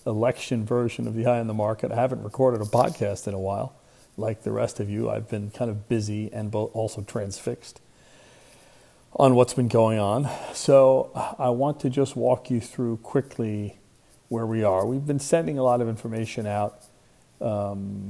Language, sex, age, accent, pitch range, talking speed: English, male, 40-59, American, 105-120 Hz, 180 wpm